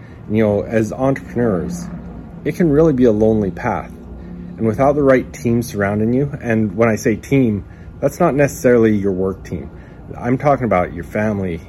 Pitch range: 90-120 Hz